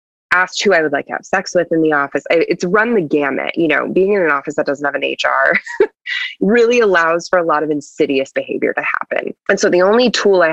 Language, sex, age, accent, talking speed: English, female, 20-39, American, 245 wpm